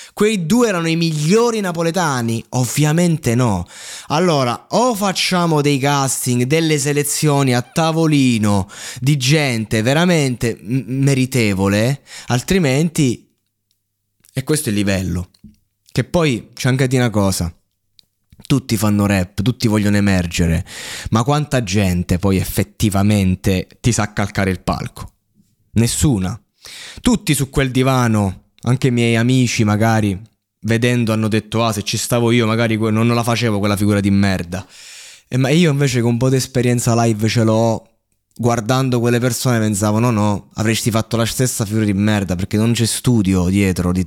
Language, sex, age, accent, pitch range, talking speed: Italian, male, 20-39, native, 105-135 Hz, 145 wpm